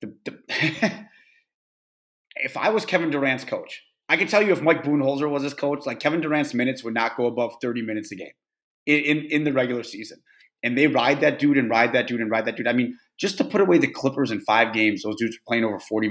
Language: English